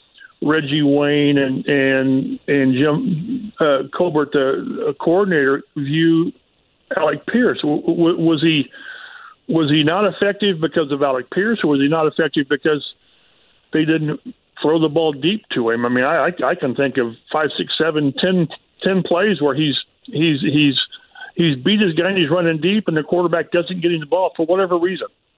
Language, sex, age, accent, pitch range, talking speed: English, male, 50-69, American, 140-180 Hz, 185 wpm